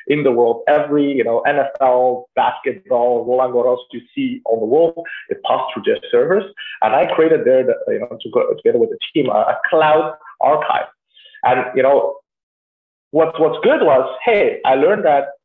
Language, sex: English, male